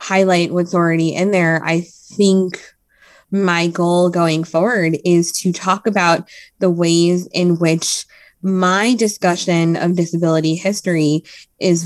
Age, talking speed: 20-39, 125 wpm